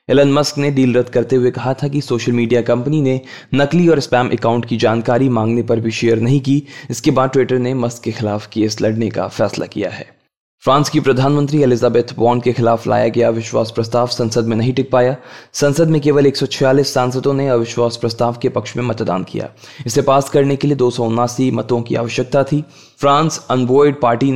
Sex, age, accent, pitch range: male, 20-39, native, 120-140 Hz